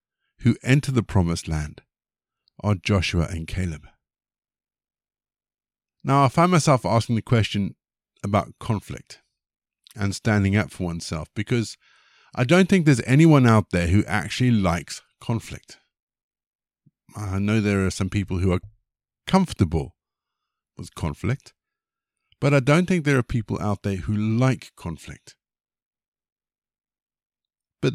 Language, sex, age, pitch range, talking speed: English, male, 50-69, 95-130 Hz, 125 wpm